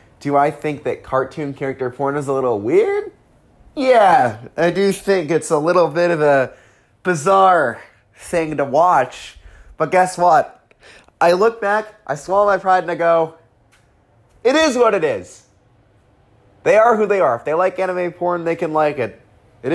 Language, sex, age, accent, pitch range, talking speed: English, male, 30-49, American, 135-185 Hz, 175 wpm